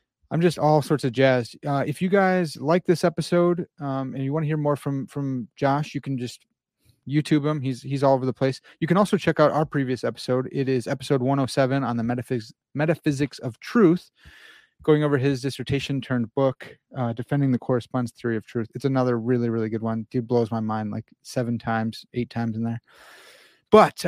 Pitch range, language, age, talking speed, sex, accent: 125-150 Hz, English, 30-49, 200 wpm, male, American